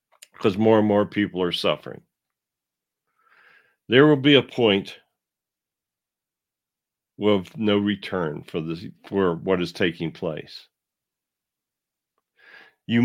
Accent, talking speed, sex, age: American, 105 wpm, male, 50-69